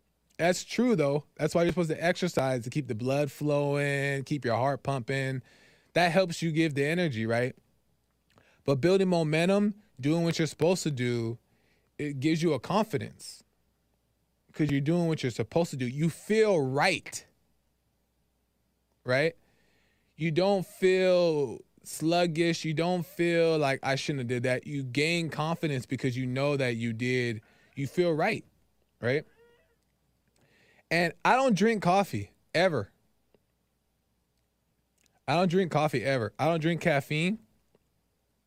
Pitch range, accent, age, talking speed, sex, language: 125-170 Hz, American, 20-39, 145 wpm, male, English